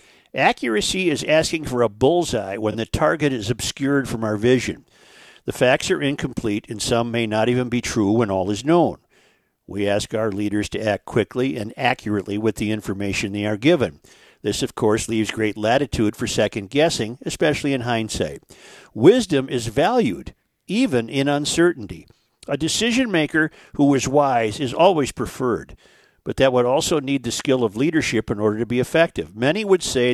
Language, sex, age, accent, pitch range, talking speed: English, male, 50-69, American, 110-140 Hz, 175 wpm